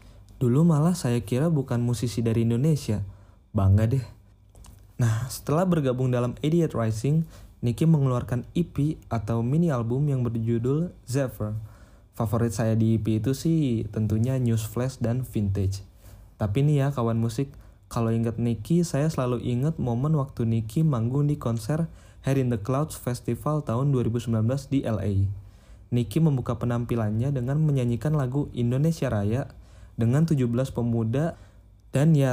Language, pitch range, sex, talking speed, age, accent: Indonesian, 110-135 Hz, male, 140 wpm, 20-39, native